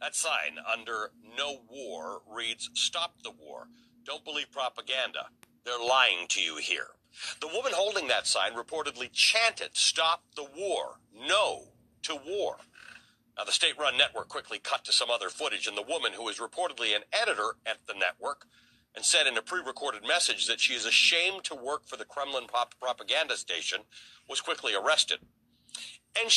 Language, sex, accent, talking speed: English, male, American, 165 wpm